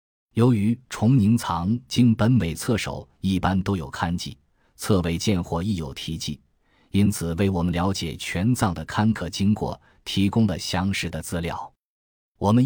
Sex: male